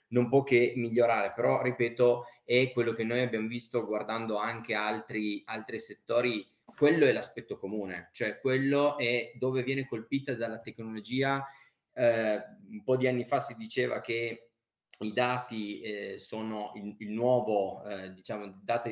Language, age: Italian, 20-39